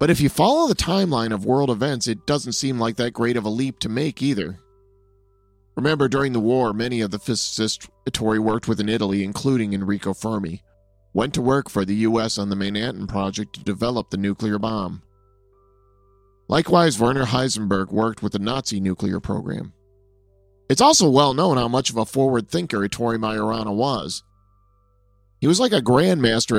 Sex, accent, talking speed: male, American, 180 wpm